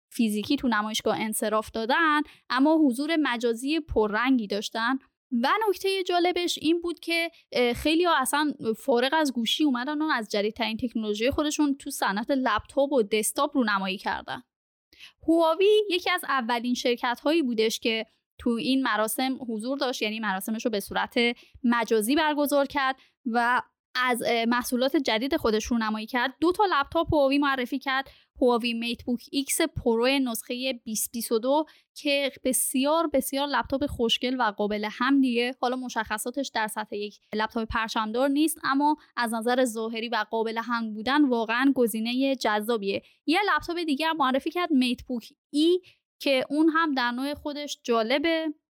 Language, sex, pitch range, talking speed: Persian, female, 230-295 Hz, 145 wpm